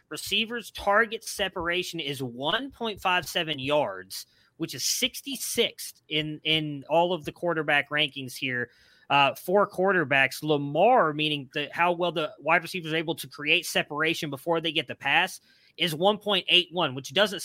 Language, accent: English, American